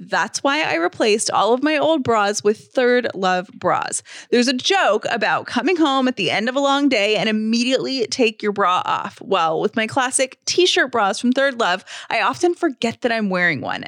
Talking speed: 210 wpm